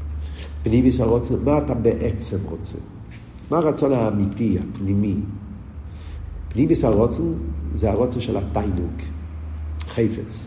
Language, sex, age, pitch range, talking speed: Hebrew, male, 50-69, 85-120 Hz, 95 wpm